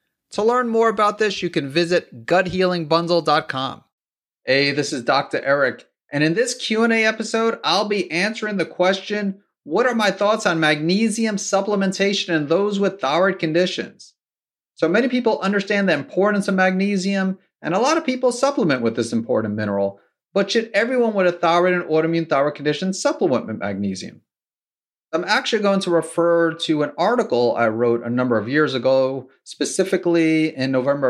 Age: 30-49